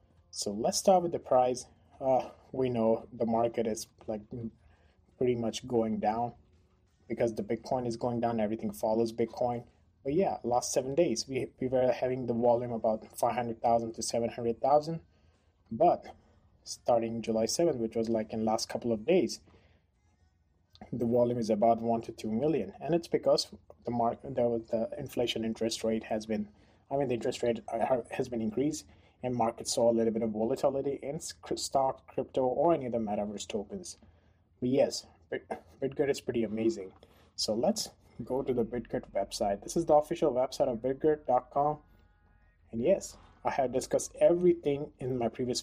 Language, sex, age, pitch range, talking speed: English, male, 20-39, 110-125 Hz, 170 wpm